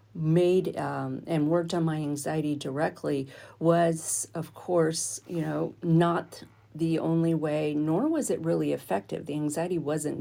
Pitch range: 140-165 Hz